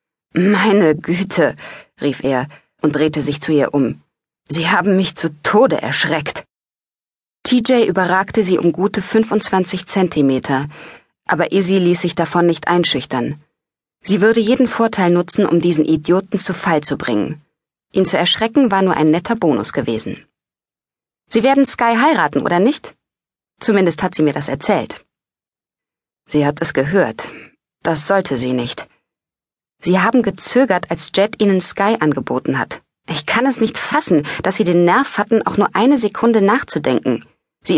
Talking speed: 150 wpm